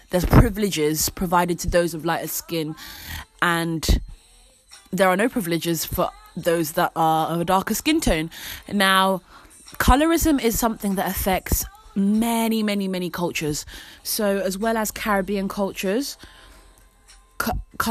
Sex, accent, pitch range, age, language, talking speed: female, British, 175-220 Hz, 20-39, English, 130 wpm